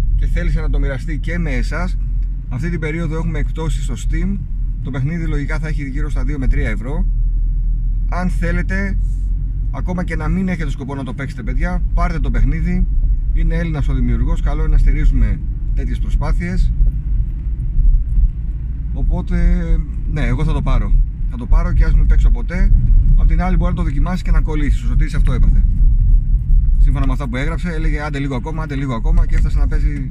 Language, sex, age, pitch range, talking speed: Greek, male, 30-49, 105-145 Hz, 185 wpm